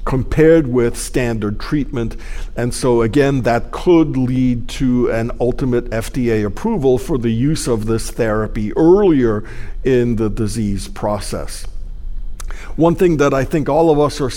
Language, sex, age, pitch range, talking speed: English, male, 50-69, 115-145 Hz, 145 wpm